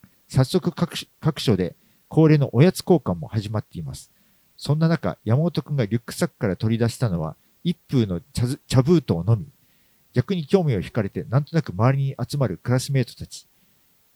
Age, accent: 50-69, native